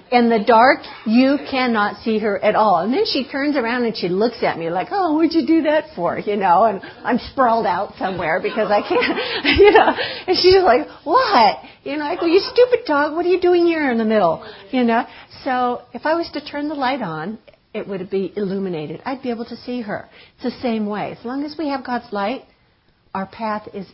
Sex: female